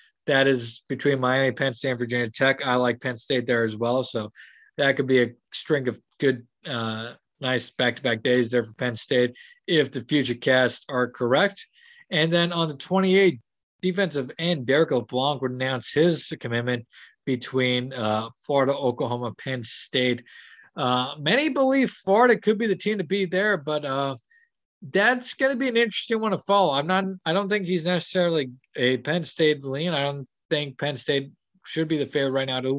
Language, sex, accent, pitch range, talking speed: English, male, American, 125-175 Hz, 190 wpm